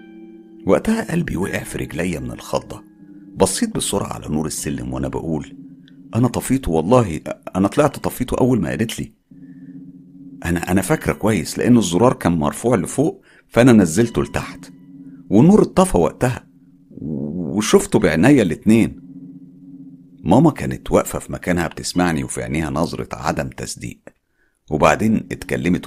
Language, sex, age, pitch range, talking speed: Arabic, male, 50-69, 80-110 Hz, 130 wpm